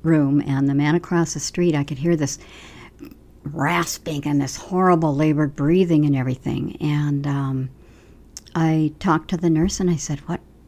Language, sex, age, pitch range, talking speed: English, male, 60-79, 145-180 Hz, 170 wpm